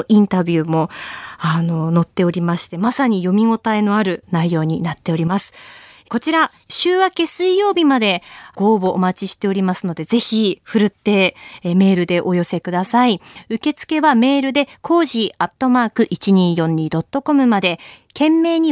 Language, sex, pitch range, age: Japanese, female, 185-270 Hz, 20-39